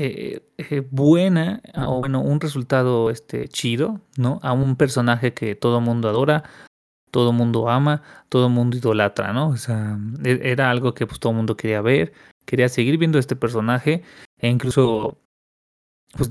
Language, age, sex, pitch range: Spanish, 30-49, male, 115-140 Hz